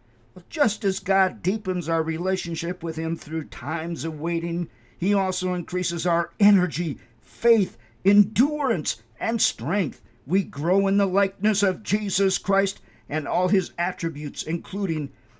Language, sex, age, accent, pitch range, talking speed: English, male, 50-69, American, 155-195 Hz, 135 wpm